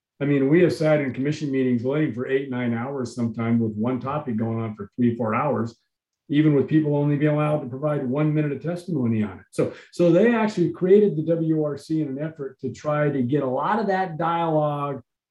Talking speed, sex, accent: 220 wpm, male, American